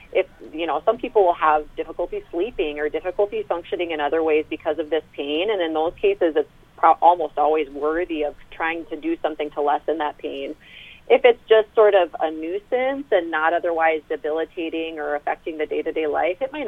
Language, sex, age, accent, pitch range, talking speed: English, female, 30-49, American, 155-230 Hz, 195 wpm